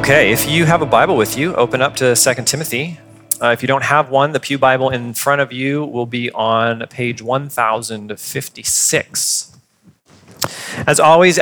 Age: 30-49